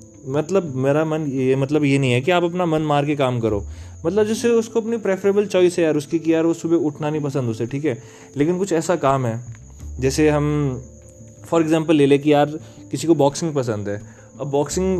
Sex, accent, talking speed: male, native, 220 wpm